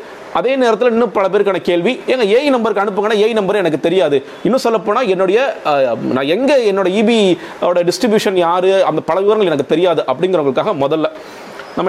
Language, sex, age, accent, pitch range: Tamil, male, 30-49, native, 165-220 Hz